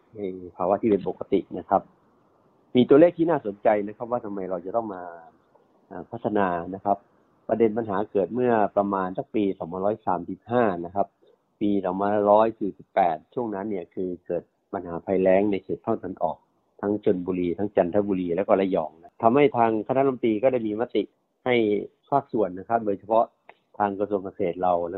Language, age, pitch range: Thai, 30-49, 90-110 Hz